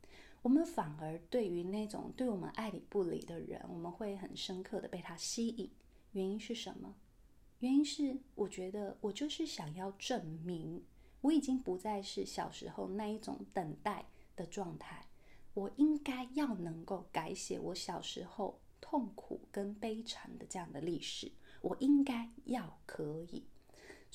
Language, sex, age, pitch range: Chinese, female, 20-39, 185-255 Hz